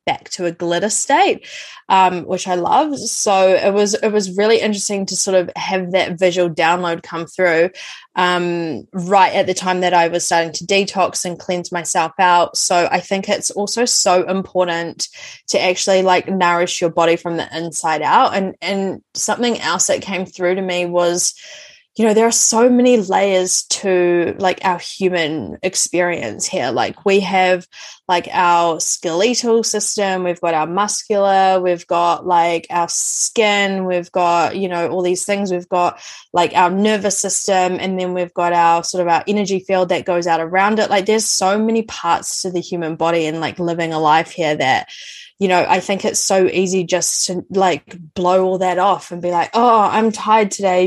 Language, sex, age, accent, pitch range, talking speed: English, female, 20-39, Australian, 175-200 Hz, 190 wpm